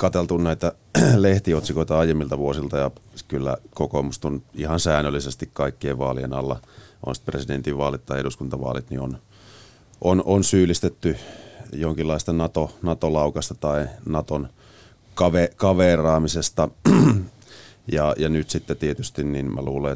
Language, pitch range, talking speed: Finnish, 70-80 Hz, 110 wpm